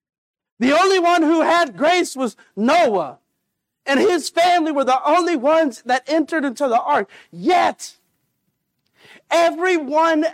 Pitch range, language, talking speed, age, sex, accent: 265-340 Hz, English, 130 wpm, 50-69, male, American